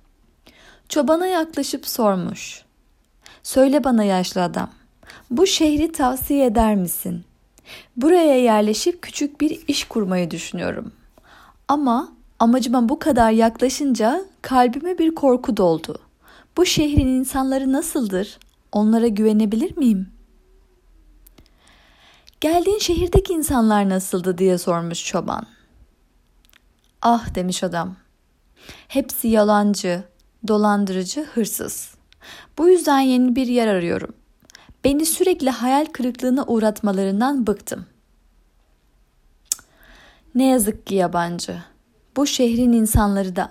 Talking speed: 95 wpm